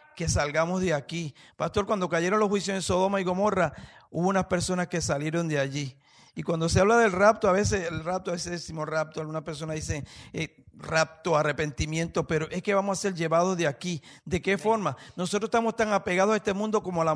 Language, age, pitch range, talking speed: English, 50-69, 165-205 Hz, 215 wpm